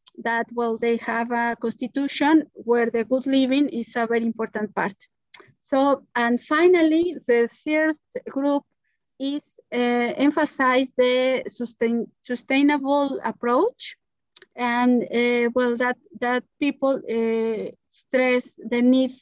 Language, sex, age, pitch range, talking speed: English, female, 30-49, 240-275 Hz, 120 wpm